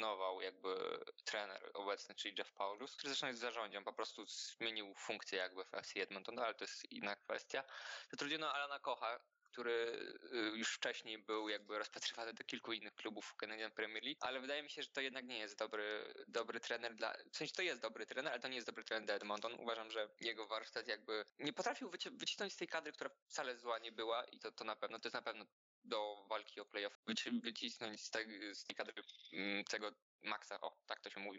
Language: Polish